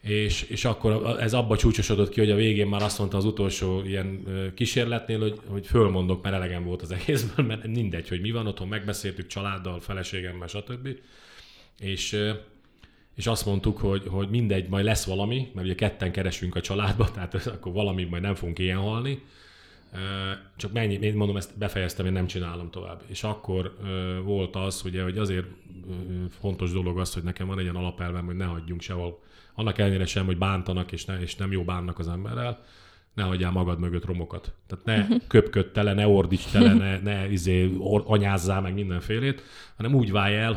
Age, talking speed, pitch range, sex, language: 30-49, 180 wpm, 90-105 Hz, male, Hungarian